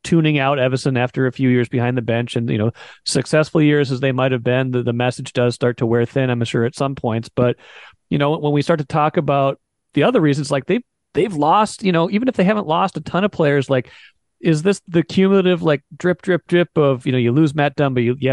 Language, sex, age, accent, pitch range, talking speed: English, male, 40-59, American, 130-165 Hz, 260 wpm